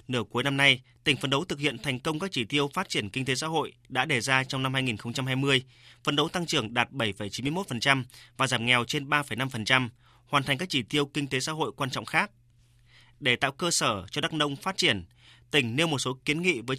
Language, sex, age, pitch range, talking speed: Vietnamese, male, 20-39, 120-150 Hz, 230 wpm